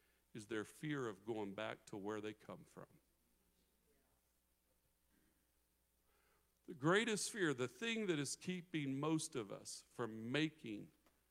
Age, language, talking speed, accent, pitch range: 50-69, English, 125 wpm, American, 105-150 Hz